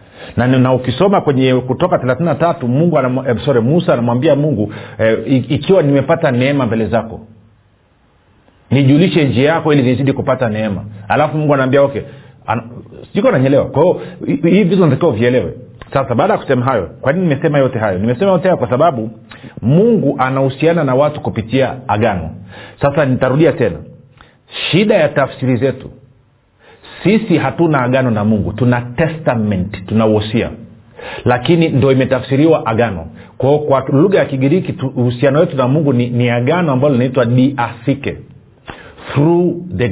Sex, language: male, Swahili